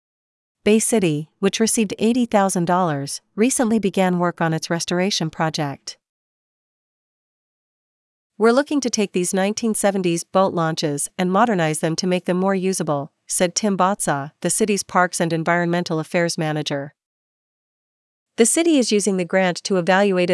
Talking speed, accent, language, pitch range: 135 wpm, American, English, 165-200 Hz